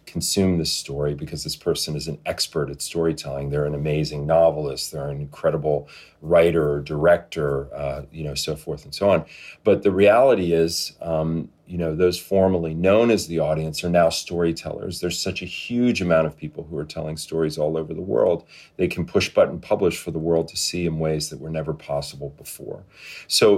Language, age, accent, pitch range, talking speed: English, 40-59, American, 75-90 Hz, 200 wpm